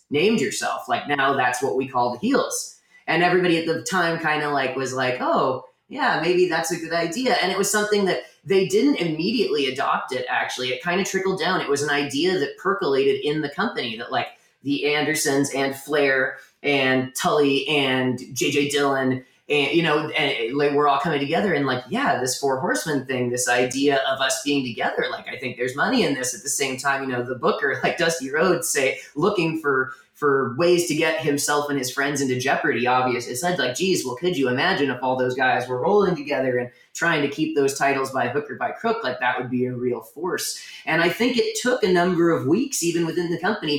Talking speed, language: 225 wpm, English